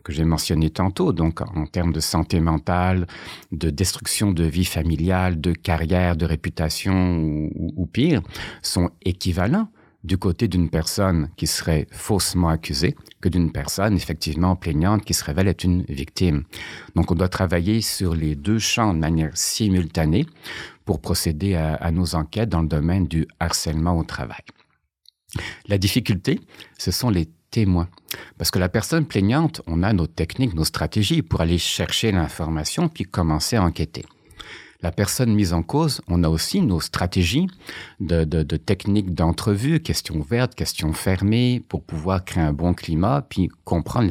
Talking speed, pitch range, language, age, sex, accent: 160 wpm, 80-100 Hz, French, 50-69, male, French